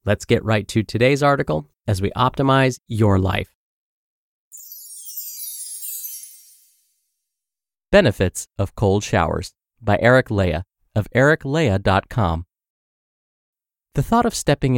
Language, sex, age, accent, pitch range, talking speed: English, male, 30-49, American, 95-145 Hz, 95 wpm